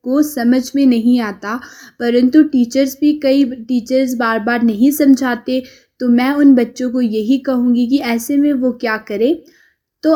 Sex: female